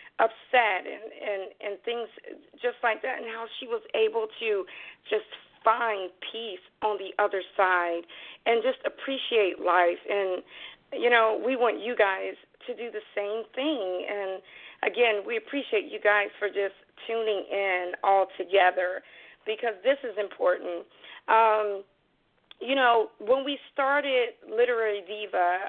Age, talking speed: 40-59, 145 wpm